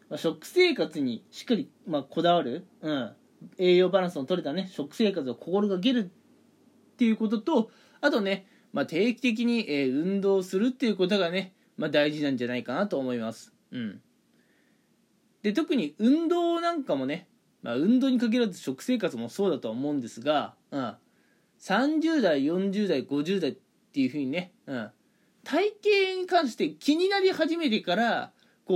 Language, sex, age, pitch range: Japanese, male, 20-39, 185-265 Hz